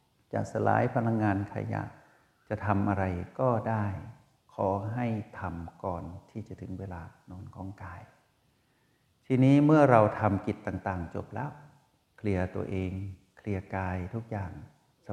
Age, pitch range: 60-79, 95-115 Hz